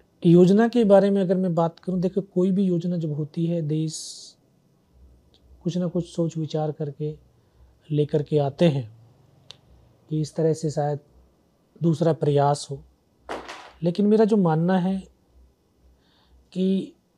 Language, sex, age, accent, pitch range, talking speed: Hindi, male, 40-59, native, 135-180 Hz, 140 wpm